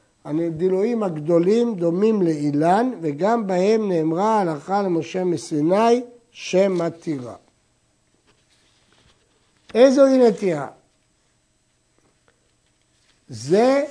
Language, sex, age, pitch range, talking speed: Hebrew, male, 60-79, 180-230 Hz, 60 wpm